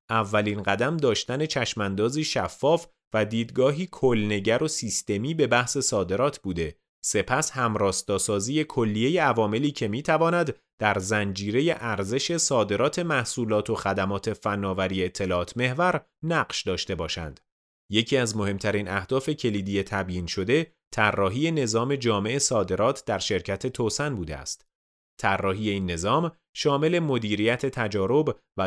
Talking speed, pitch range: 115 wpm, 100-140 Hz